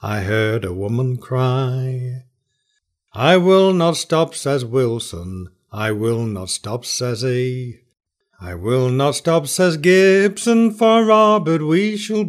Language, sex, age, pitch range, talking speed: English, male, 60-79, 120-195 Hz, 130 wpm